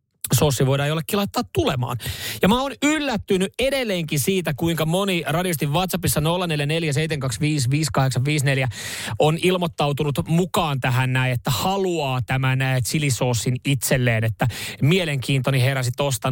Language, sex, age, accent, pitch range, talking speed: Finnish, male, 30-49, native, 130-165 Hz, 115 wpm